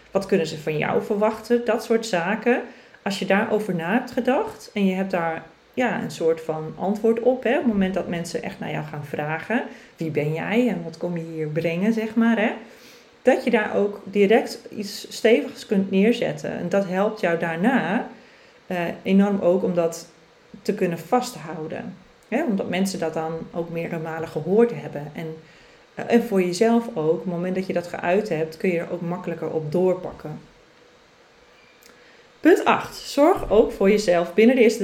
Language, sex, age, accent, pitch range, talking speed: Dutch, female, 40-59, Dutch, 170-230 Hz, 180 wpm